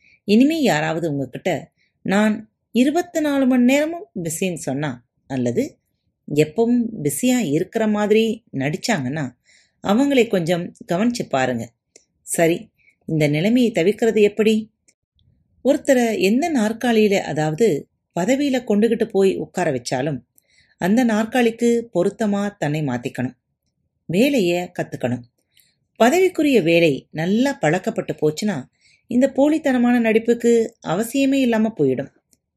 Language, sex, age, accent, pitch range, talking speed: Tamil, female, 30-49, native, 155-235 Hz, 95 wpm